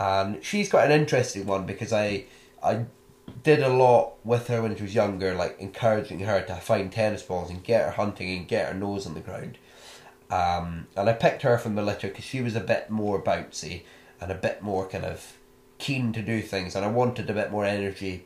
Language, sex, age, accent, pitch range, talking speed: English, male, 20-39, British, 95-120 Hz, 225 wpm